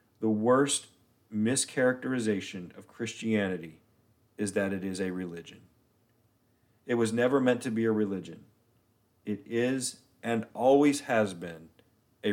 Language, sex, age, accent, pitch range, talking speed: English, male, 40-59, American, 110-125 Hz, 125 wpm